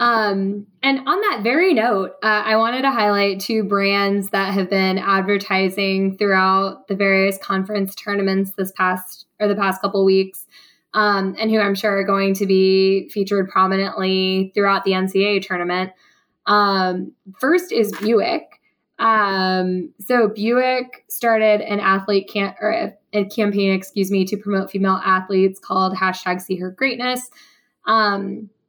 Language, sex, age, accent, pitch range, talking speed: English, female, 10-29, American, 190-210 Hz, 145 wpm